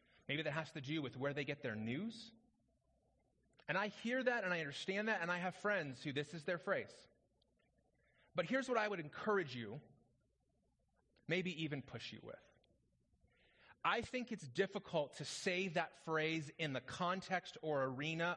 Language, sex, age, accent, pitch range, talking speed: English, male, 30-49, American, 140-200 Hz, 175 wpm